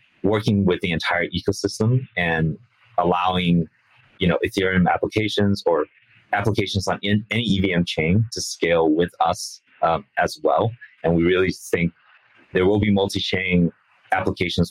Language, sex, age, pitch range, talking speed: English, male, 30-49, 85-105 Hz, 135 wpm